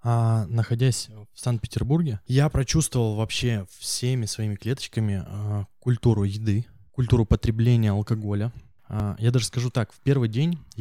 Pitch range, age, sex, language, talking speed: 105-125 Hz, 20-39, male, Russian, 135 wpm